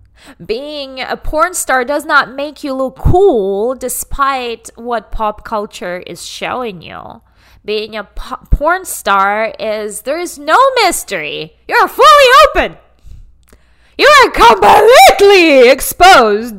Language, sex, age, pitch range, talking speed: English, female, 20-39, 215-300 Hz, 125 wpm